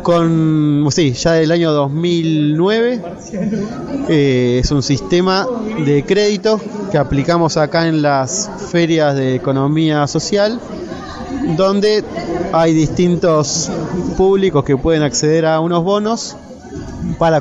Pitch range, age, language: 145-175 Hz, 20-39, Spanish